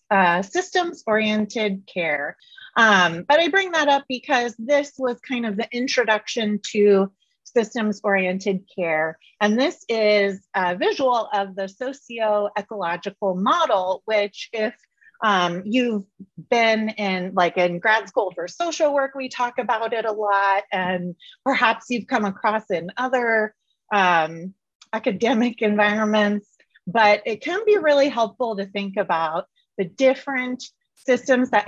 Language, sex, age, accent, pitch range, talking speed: English, female, 30-49, American, 190-245 Hz, 135 wpm